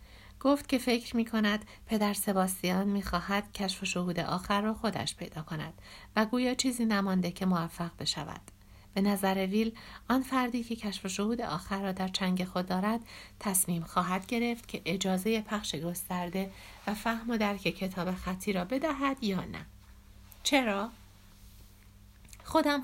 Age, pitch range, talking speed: 60-79, 175-225 Hz, 145 wpm